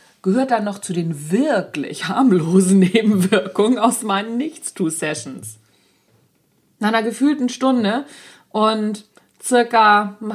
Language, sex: German, female